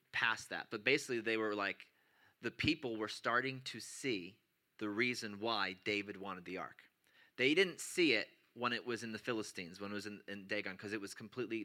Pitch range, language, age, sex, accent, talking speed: 110-130 Hz, English, 30-49, male, American, 205 wpm